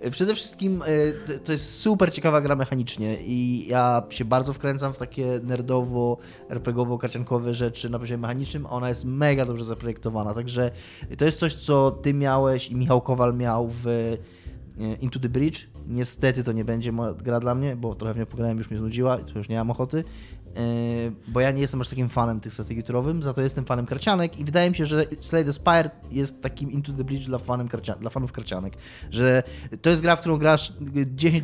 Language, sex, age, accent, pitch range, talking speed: Polish, male, 20-39, native, 115-140 Hz, 195 wpm